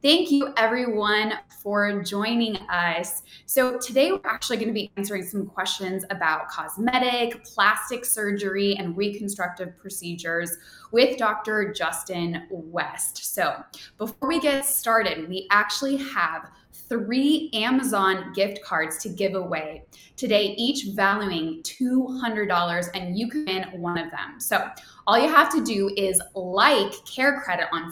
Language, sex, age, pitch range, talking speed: English, female, 20-39, 185-250 Hz, 135 wpm